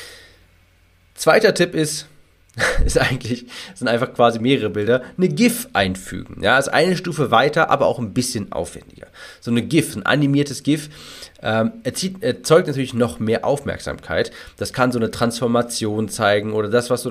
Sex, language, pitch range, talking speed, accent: male, German, 110-140 Hz, 160 wpm, German